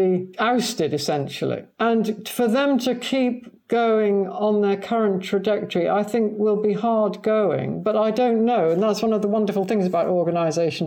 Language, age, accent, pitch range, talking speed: English, 50-69, British, 180-220 Hz, 170 wpm